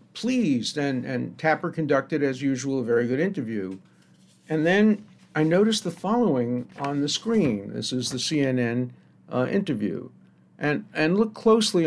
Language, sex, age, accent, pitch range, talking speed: English, male, 50-69, American, 125-160 Hz, 150 wpm